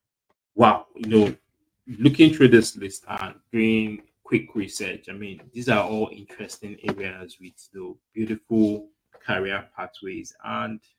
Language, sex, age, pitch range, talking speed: English, male, 20-39, 100-115 Hz, 130 wpm